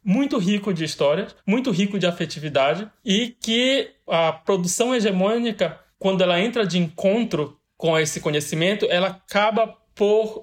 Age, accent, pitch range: 20-39, Brazilian, 170-215 Hz